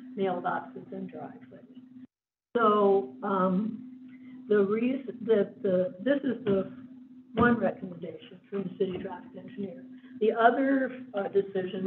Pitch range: 195-255 Hz